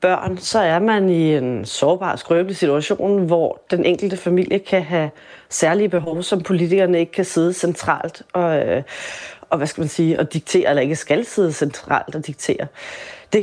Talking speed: 180 wpm